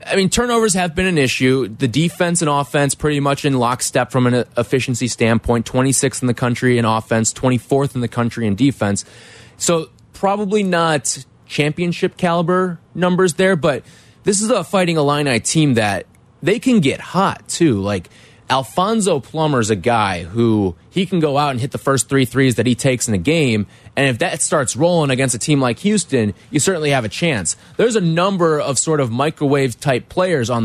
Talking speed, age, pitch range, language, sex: 190 wpm, 20-39, 120-170 Hz, English, male